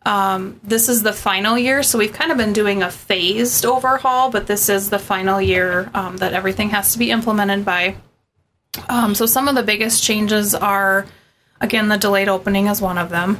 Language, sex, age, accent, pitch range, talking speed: English, female, 20-39, American, 195-225 Hz, 200 wpm